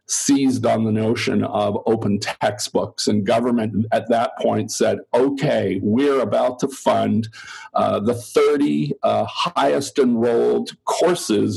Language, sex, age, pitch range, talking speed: English, male, 50-69, 110-135 Hz, 130 wpm